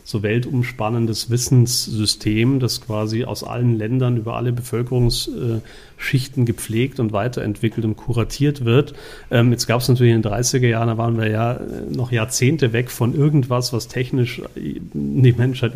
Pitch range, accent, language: 110-125 Hz, German, German